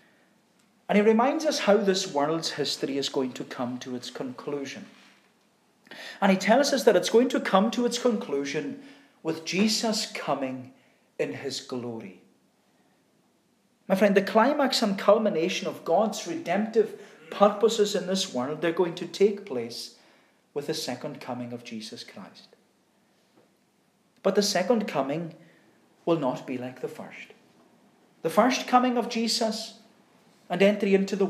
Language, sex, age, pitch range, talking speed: English, male, 40-59, 150-215 Hz, 150 wpm